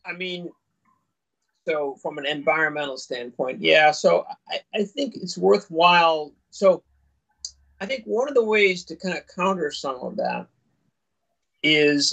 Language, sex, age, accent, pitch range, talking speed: English, male, 40-59, American, 145-185 Hz, 145 wpm